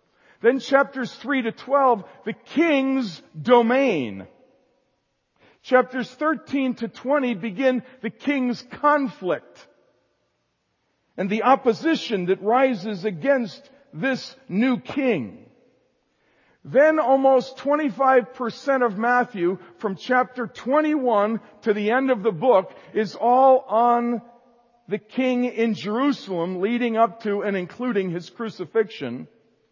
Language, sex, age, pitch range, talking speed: English, male, 50-69, 205-260 Hz, 105 wpm